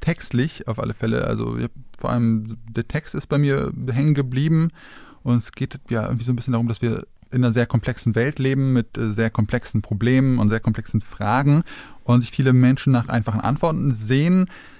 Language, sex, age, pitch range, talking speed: German, male, 20-39, 115-135 Hz, 190 wpm